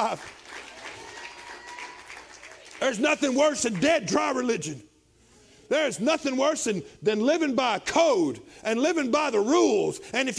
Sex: male